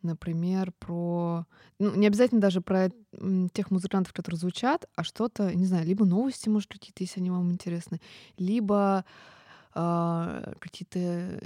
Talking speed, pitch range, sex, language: 130 wpm, 175-210 Hz, female, Russian